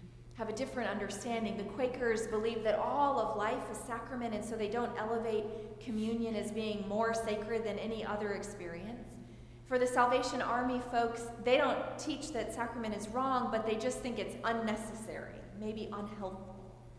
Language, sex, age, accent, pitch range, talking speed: English, female, 30-49, American, 200-245 Hz, 165 wpm